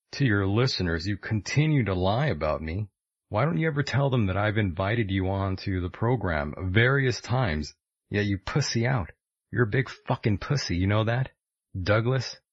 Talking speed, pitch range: 185 wpm, 95-130 Hz